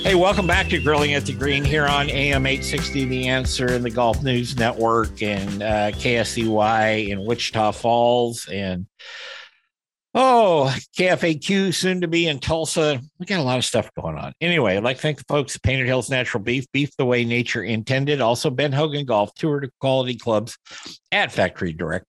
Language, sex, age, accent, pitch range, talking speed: English, male, 50-69, American, 95-135 Hz, 185 wpm